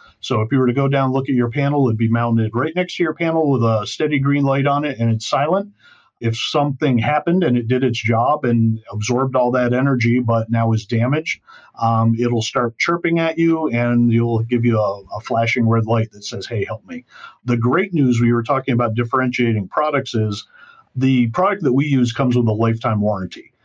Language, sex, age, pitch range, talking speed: English, male, 50-69, 115-140 Hz, 220 wpm